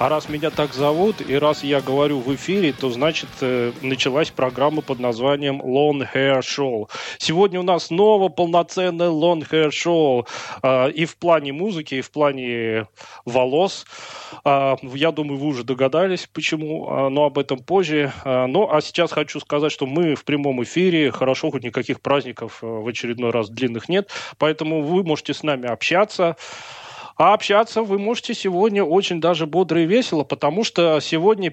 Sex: male